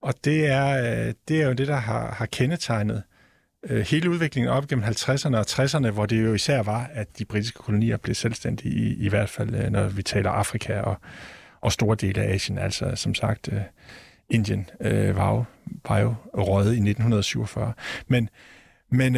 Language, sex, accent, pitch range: Danish, male, native, 110-140 Hz